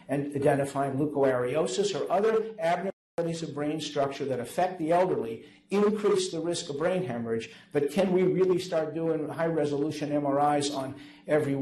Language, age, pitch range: English, 60-79, 135-175 Hz